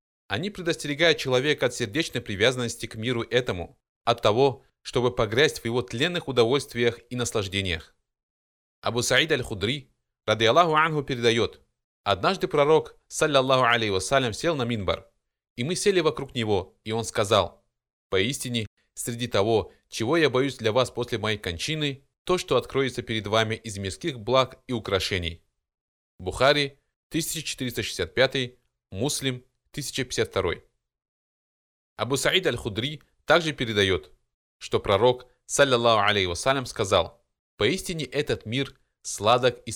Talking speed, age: 120 wpm, 20-39